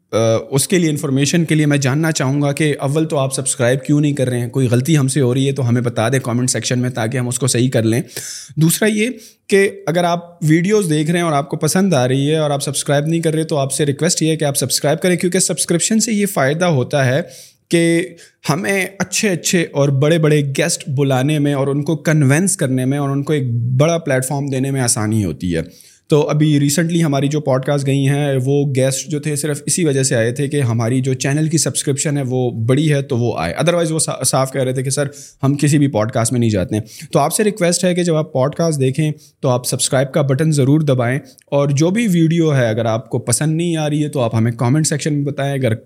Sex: male